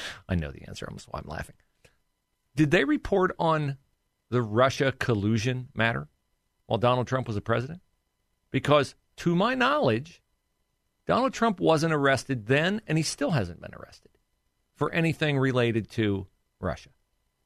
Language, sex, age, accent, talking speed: English, male, 40-59, American, 140 wpm